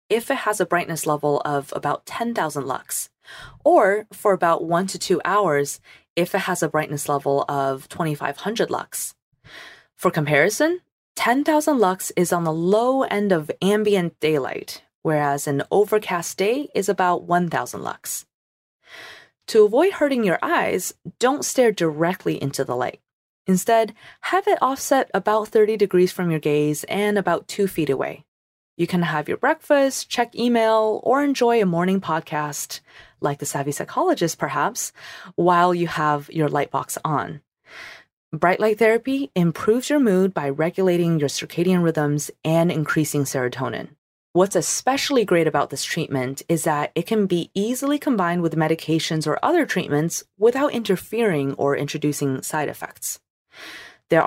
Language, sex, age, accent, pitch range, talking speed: English, female, 20-39, American, 150-220 Hz, 150 wpm